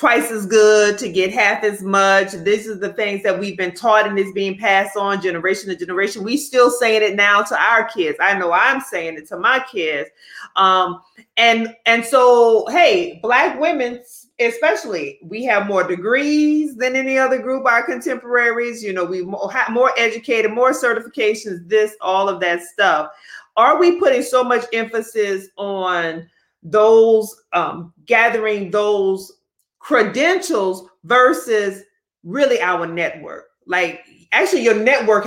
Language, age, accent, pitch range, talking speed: English, 30-49, American, 195-240 Hz, 155 wpm